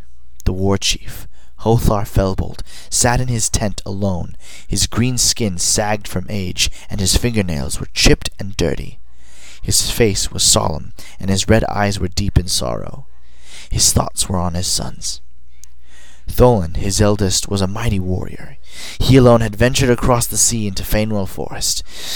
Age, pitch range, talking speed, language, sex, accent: 30-49, 65-105 Hz, 155 wpm, English, male, American